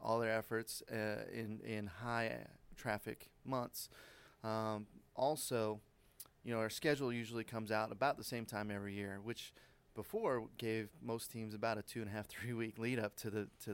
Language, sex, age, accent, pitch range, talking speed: English, male, 30-49, American, 105-115 Hz, 185 wpm